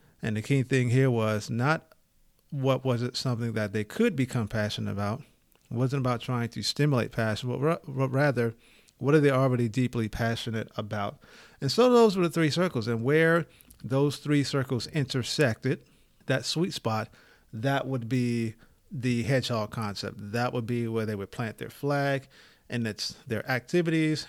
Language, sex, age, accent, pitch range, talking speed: English, male, 50-69, American, 110-135 Hz, 170 wpm